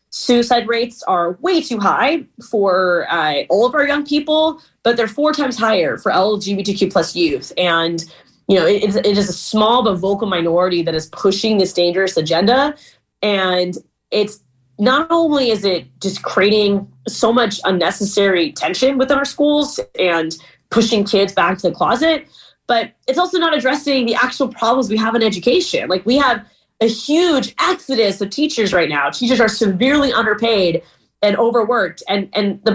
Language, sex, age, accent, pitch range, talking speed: English, female, 20-39, American, 175-235 Hz, 170 wpm